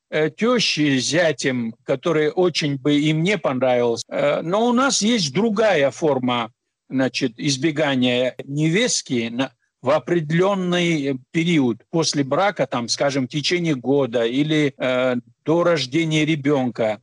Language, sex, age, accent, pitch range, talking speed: Russian, male, 60-79, native, 150-195 Hz, 110 wpm